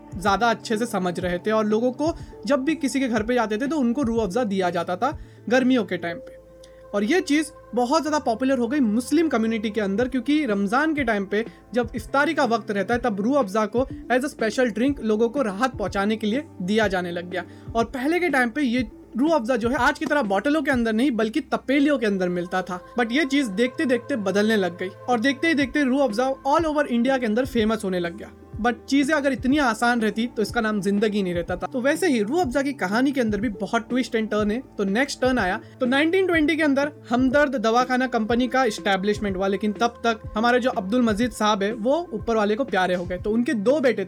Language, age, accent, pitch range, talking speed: Hindi, 20-39, native, 215-275 Hz, 240 wpm